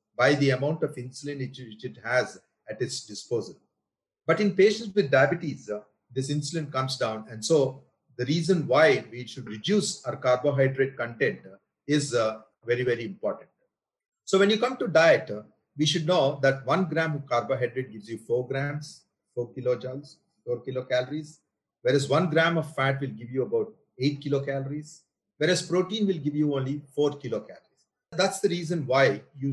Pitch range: 130-180 Hz